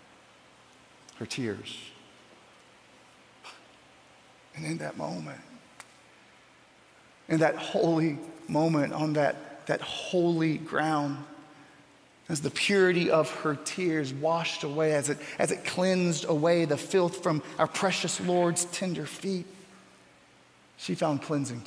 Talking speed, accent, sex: 110 wpm, American, male